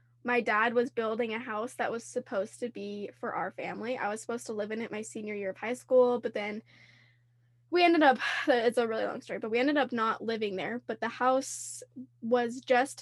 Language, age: English, 10-29